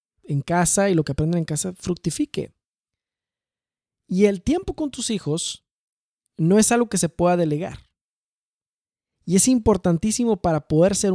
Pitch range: 160-205 Hz